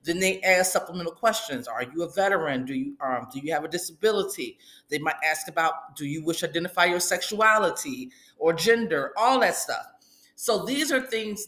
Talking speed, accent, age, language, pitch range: 195 wpm, American, 30-49, English, 150-195 Hz